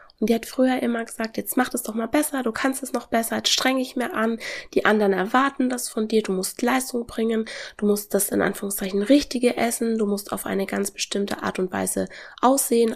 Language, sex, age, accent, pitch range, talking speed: German, female, 20-39, German, 210-260 Hz, 225 wpm